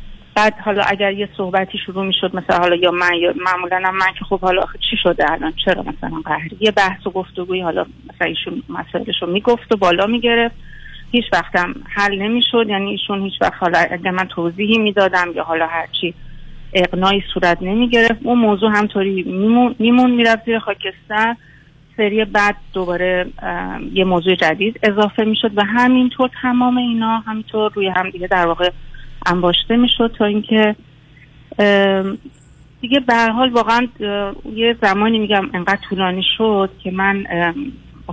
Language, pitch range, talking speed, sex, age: Persian, 185-225 Hz, 155 wpm, female, 30-49